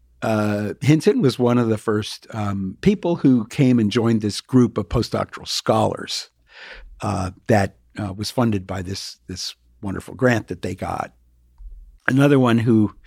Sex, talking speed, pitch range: male, 155 wpm, 90-120 Hz